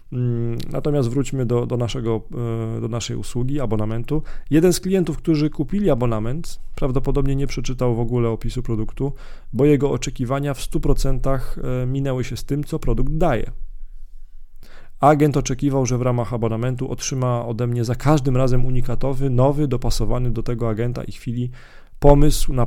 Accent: native